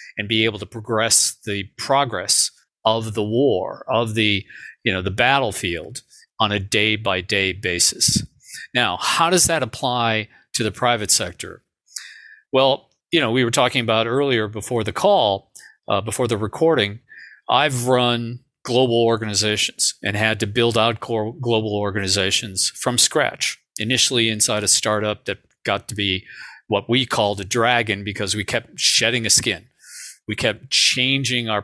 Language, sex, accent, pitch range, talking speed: English, male, American, 105-125 Hz, 155 wpm